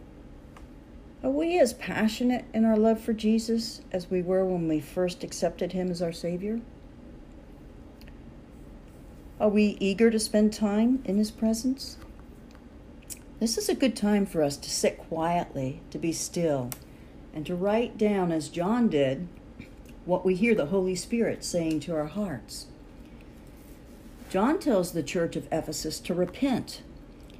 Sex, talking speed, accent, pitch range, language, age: female, 145 wpm, American, 160-225 Hz, English, 60-79